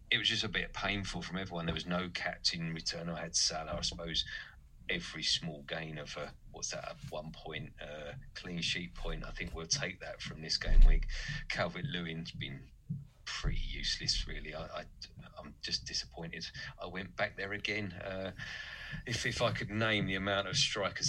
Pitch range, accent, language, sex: 85-105 Hz, British, English, male